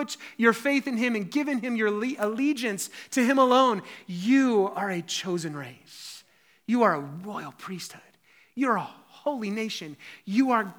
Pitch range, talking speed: 180-240 Hz, 155 wpm